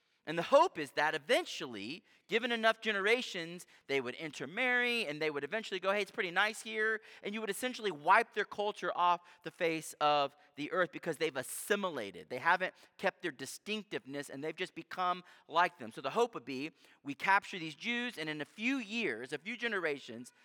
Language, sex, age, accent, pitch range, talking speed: English, male, 40-59, American, 160-220 Hz, 195 wpm